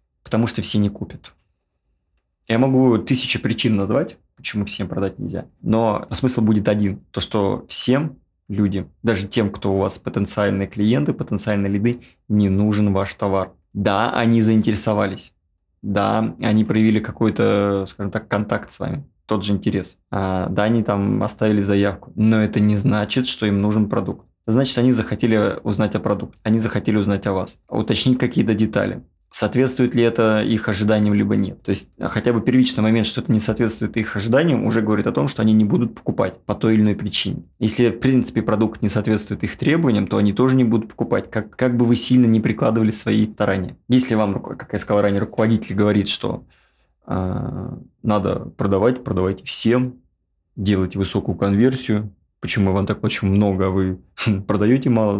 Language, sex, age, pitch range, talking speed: Russian, male, 20-39, 100-115 Hz, 175 wpm